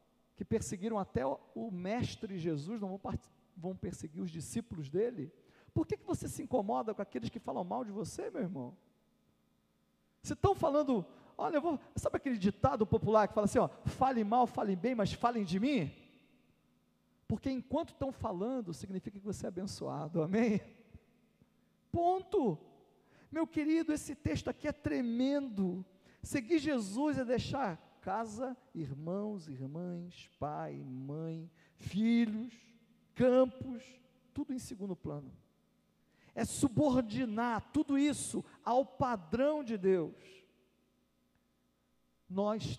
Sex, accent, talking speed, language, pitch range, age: male, Brazilian, 130 wpm, Portuguese, 160-250 Hz, 50-69